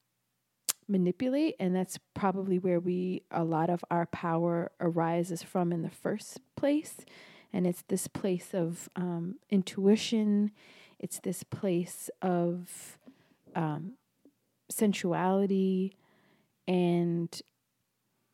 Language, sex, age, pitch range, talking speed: English, female, 40-59, 165-195 Hz, 100 wpm